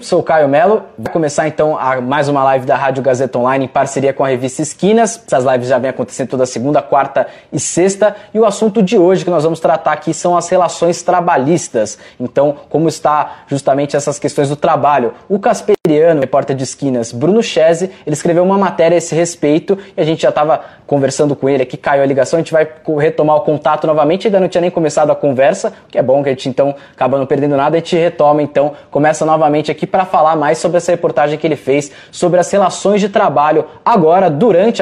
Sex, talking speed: male, 215 wpm